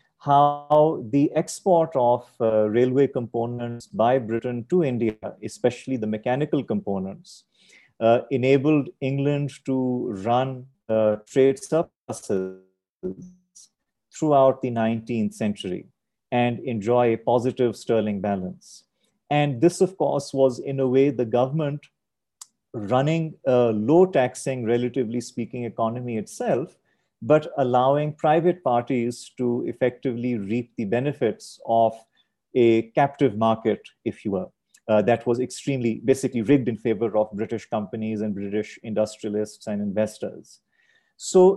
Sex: male